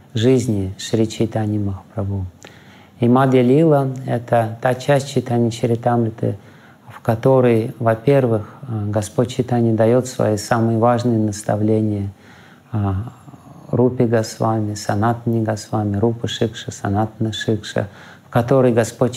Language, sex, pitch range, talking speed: Russian, male, 105-120 Hz, 105 wpm